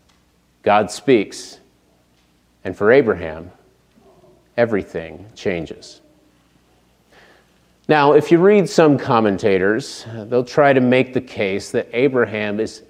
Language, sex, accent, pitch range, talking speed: English, male, American, 110-140 Hz, 100 wpm